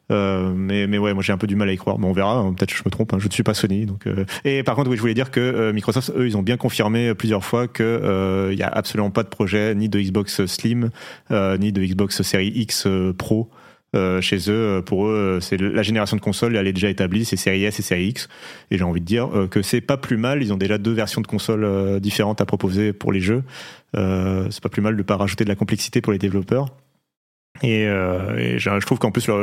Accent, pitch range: French, 100-120 Hz